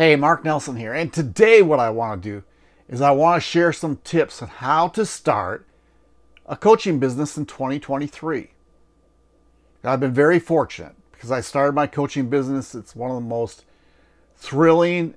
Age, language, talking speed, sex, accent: 60-79, English, 170 wpm, male, American